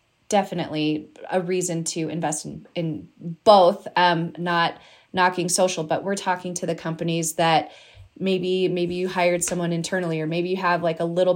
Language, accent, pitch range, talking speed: English, American, 165-185 Hz, 170 wpm